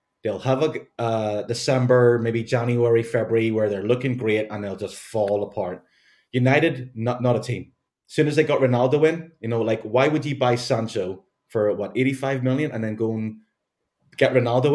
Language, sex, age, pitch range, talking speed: English, male, 20-39, 115-135 Hz, 190 wpm